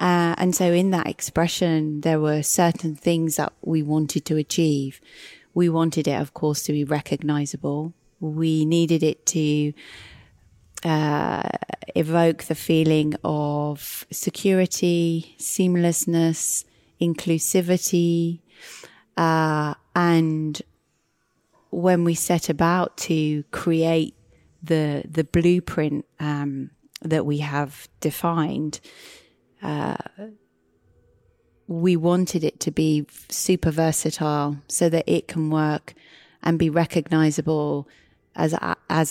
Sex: female